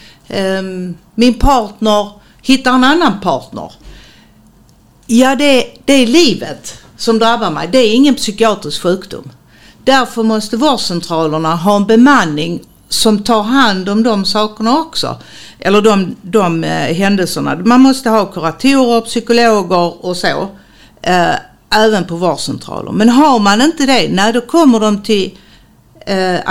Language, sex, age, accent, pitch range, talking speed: English, female, 60-79, Swedish, 190-245 Hz, 135 wpm